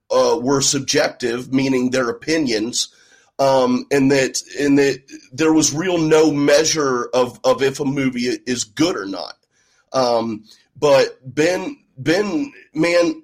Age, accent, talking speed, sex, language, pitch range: 30-49, American, 135 wpm, male, English, 135-195 Hz